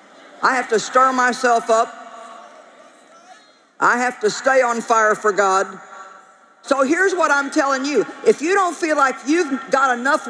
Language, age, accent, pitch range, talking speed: English, 50-69, American, 200-285 Hz, 165 wpm